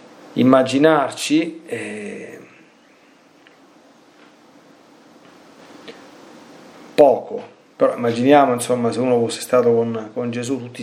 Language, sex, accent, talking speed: Italian, male, native, 80 wpm